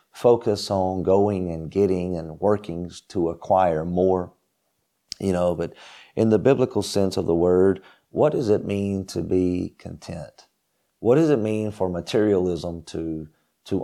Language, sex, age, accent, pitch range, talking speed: English, male, 40-59, American, 85-105 Hz, 150 wpm